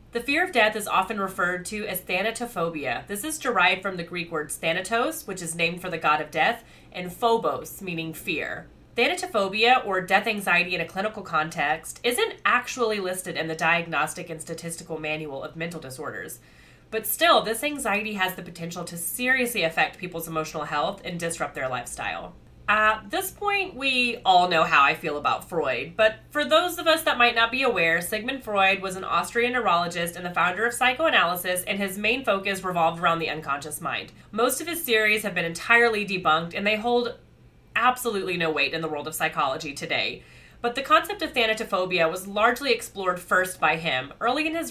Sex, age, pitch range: female, 30-49, 170-240 Hz